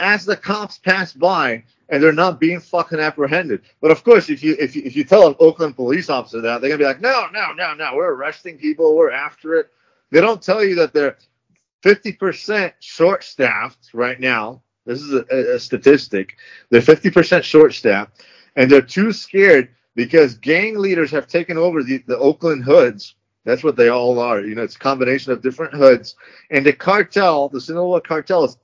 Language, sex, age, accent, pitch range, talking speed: English, male, 40-59, American, 130-190 Hz, 195 wpm